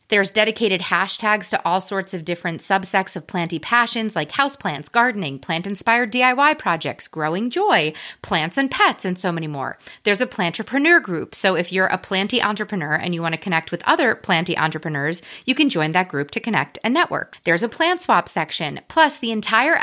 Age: 30-49